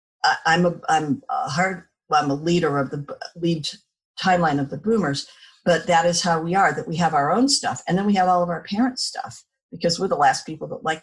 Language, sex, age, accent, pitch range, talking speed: English, female, 50-69, American, 165-200 Hz, 235 wpm